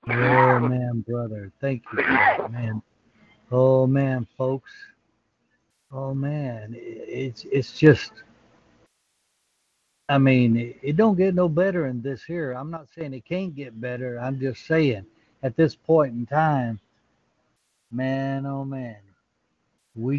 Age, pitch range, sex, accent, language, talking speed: 60-79, 120-140 Hz, male, American, English, 130 wpm